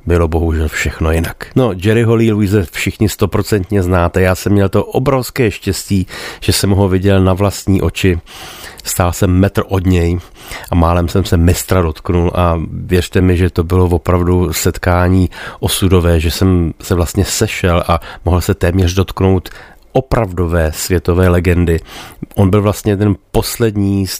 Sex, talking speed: male, 155 wpm